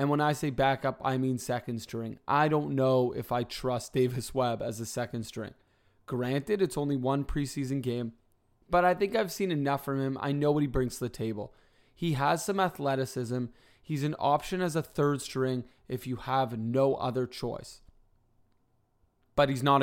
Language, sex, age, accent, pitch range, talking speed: English, male, 20-39, American, 120-145 Hz, 190 wpm